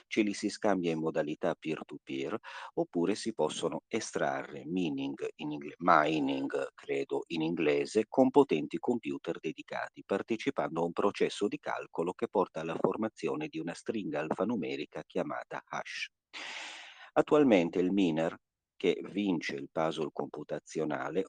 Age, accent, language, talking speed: 50-69, native, Italian, 125 wpm